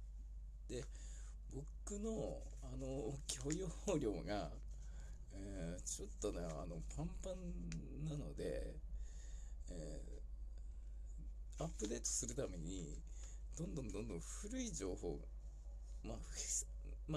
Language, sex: Japanese, male